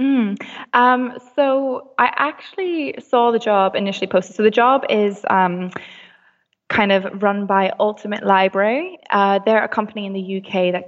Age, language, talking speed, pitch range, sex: 10-29, English, 160 wpm, 185-225 Hz, female